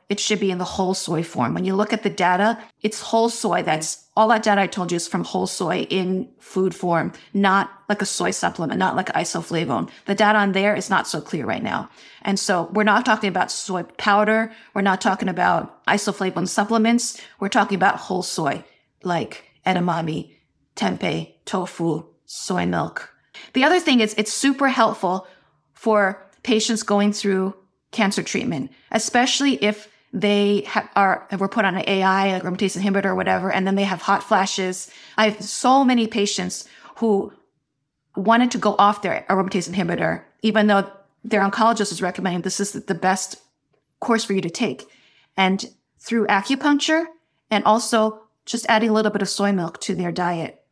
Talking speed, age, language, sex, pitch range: 180 wpm, 30-49, English, female, 185-220 Hz